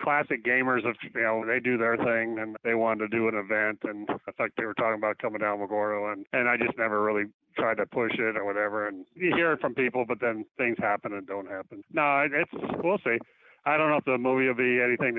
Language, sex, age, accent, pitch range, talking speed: English, male, 40-59, American, 110-125 Hz, 250 wpm